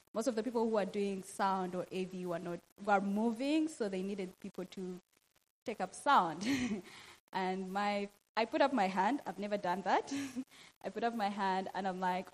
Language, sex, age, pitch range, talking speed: English, female, 20-39, 195-250 Hz, 200 wpm